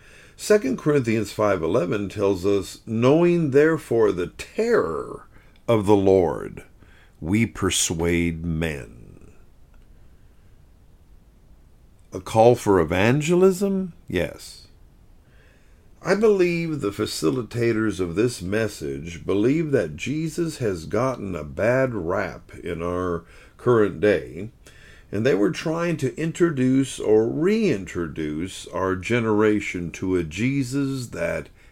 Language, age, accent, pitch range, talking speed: English, 50-69, American, 90-135 Hz, 100 wpm